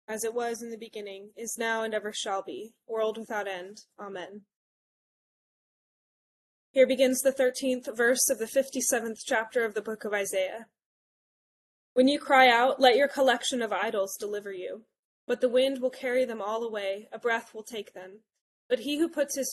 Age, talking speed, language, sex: 20-39, 180 wpm, English, female